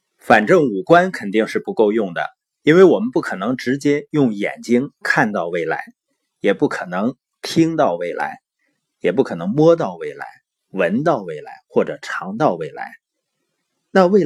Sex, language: male, Chinese